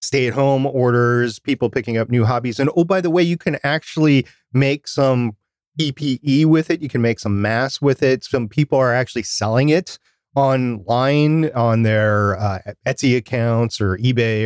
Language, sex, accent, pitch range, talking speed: English, male, American, 110-135 Hz, 180 wpm